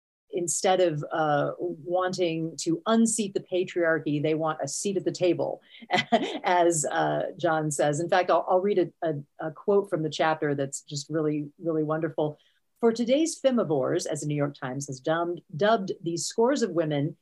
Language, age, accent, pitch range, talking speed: English, 40-59, American, 155-205 Hz, 175 wpm